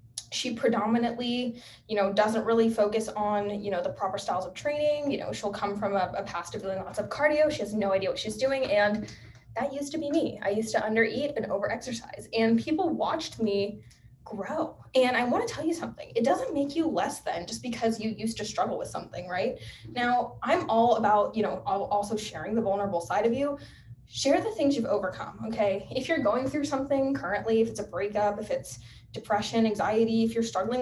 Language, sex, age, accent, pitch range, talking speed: English, female, 10-29, American, 200-255 Hz, 220 wpm